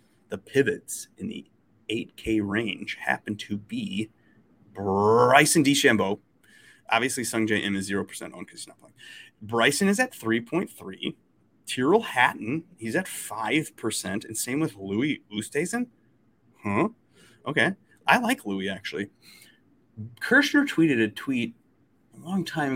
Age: 30-49